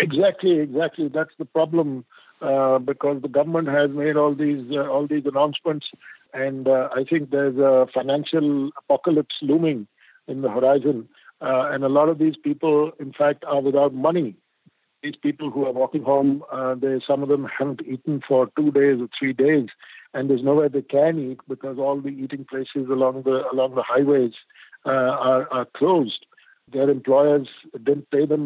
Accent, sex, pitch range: Indian, male, 130-150 Hz